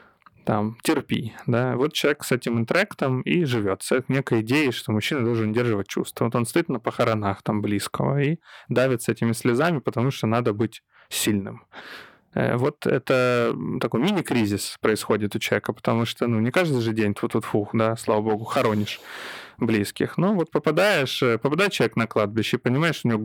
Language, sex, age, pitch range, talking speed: Ukrainian, male, 20-39, 110-130 Hz, 175 wpm